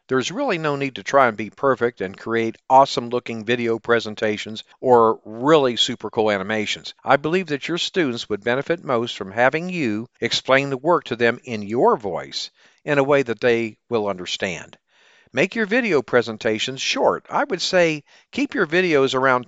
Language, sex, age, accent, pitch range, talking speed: English, male, 50-69, American, 115-145 Hz, 180 wpm